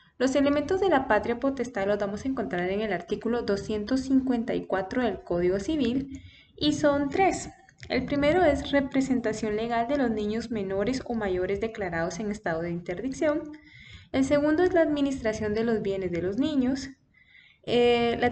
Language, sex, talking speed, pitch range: Spanish, female, 160 wpm, 200-275 Hz